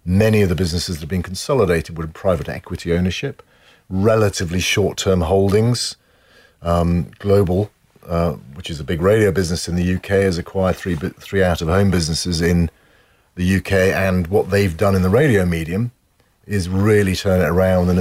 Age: 40-59